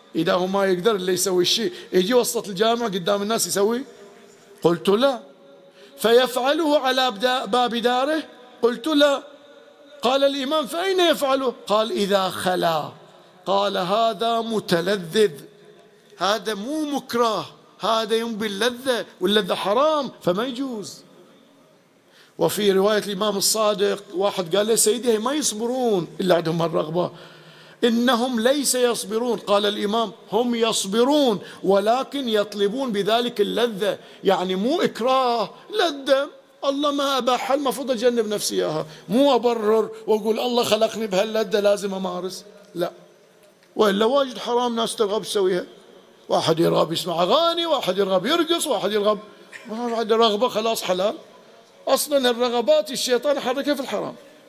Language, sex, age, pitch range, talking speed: Arabic, male, 50-69, 200-255 Hz, 120 wpm